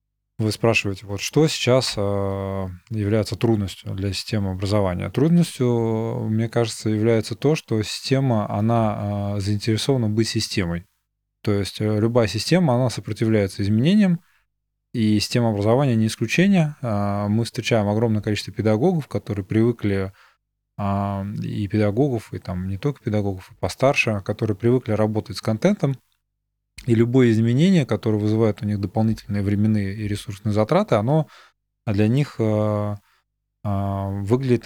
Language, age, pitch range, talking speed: Russian, 20-39, 105-120 Hz, 120 wpm